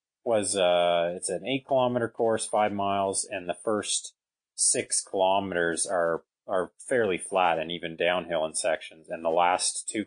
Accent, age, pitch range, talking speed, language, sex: American, 30-49, 85-105 Hz, 160 wpm, English, male